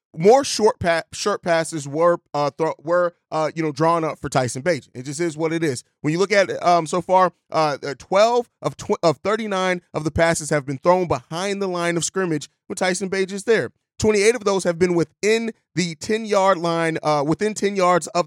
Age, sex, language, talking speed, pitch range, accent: 30-49, male, English, 215 wpm, 155-190 Hz, American